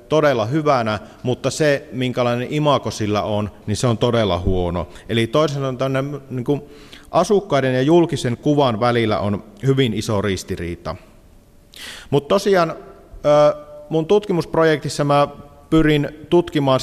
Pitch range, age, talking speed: 105-145 Hz, 30-49, 110 wpm